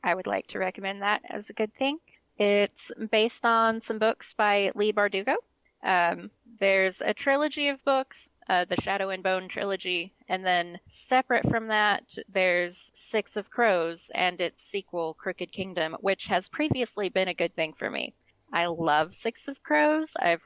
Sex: female